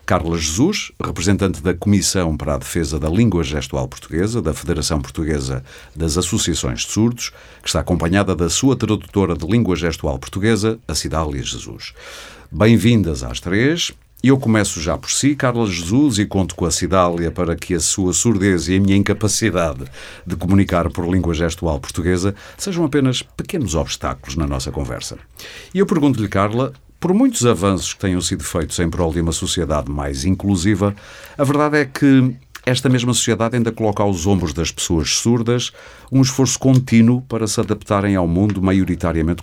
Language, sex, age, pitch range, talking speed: Portuguese, male, 50-69, 85-110 Hz, 165 wpm